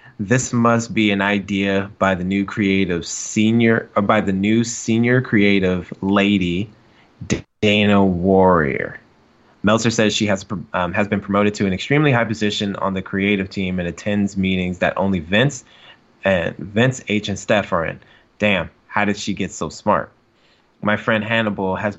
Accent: American